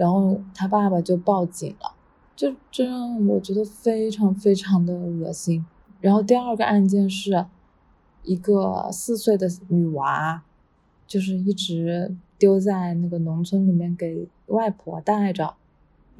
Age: 20-39